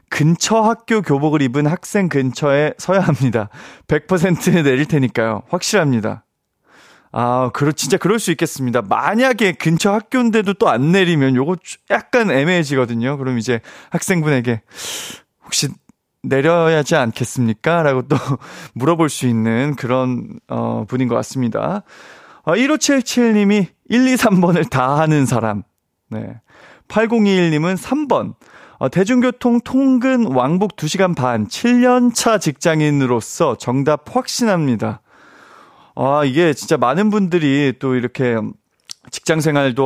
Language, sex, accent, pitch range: Korean, male, native, 130-205 Hz